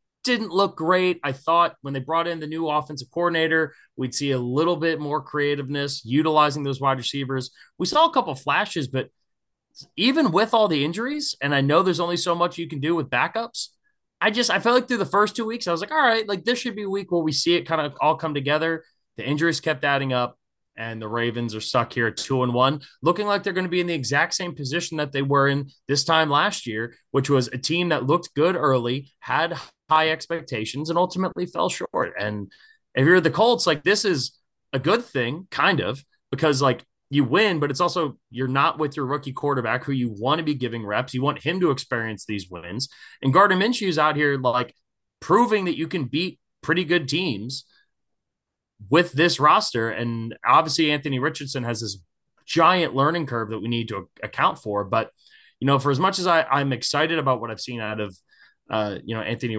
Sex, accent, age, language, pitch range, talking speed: male, American, 20-39, English, 130-170 Hz, 220 wpm